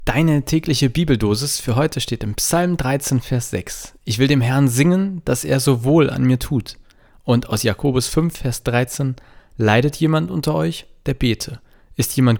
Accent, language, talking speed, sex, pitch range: German, German, 180 wpm, male, 105-135 Hz